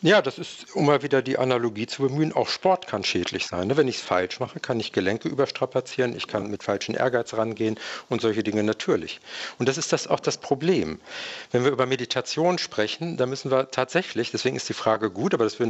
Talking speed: 225 wpm